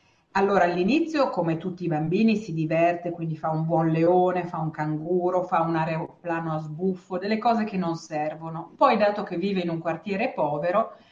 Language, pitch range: Italian, 165-220 Hz